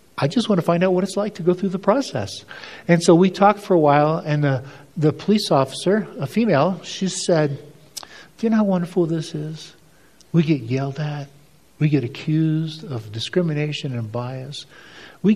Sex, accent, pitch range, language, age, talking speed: male, American, 140-180 Hz, English, 50-69, 190 wpm